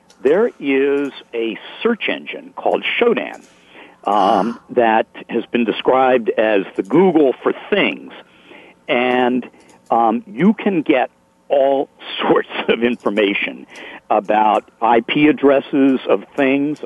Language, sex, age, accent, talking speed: English, male, 50-69, American, 110 wpm